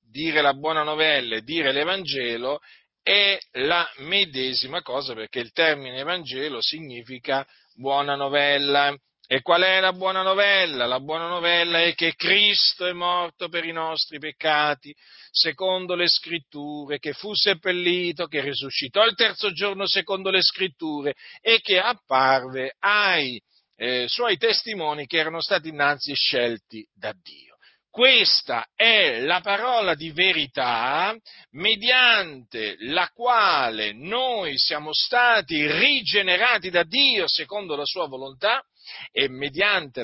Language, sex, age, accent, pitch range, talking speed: Italian, male, 40-59, native, 145-200 Hz, 125 wpm